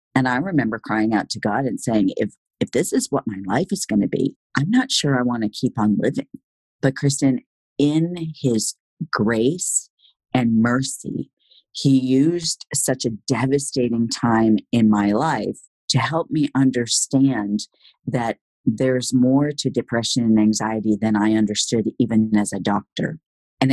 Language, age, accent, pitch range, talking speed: English, 50-69, American, 110-145 Hz, 160 wpm